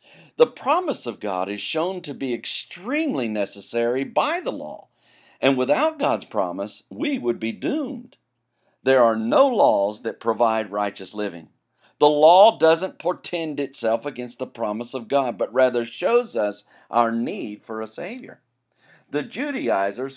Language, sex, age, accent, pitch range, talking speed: English, male, 50-69, American, 105-140 Hz, 150 wpm